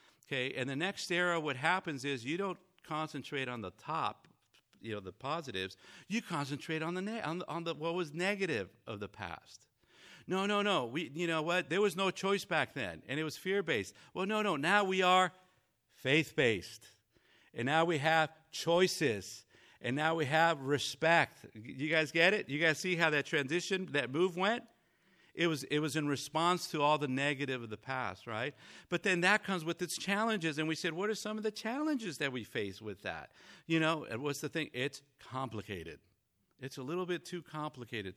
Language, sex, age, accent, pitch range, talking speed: English, male, 50-69, American, 135-180 Hz, 205 wpm